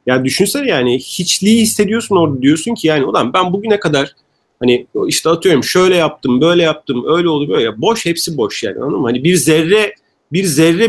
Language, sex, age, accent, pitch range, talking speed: Turkish, male, 40-59, native, 125-175 Hz, 180 wpm